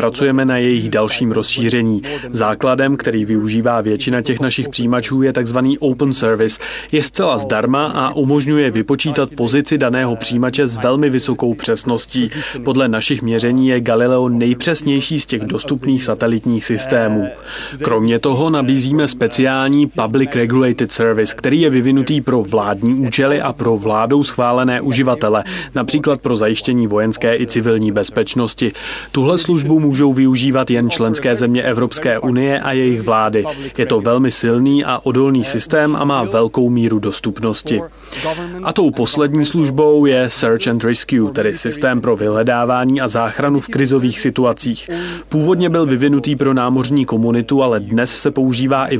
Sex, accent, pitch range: male, native, 120-145 Hz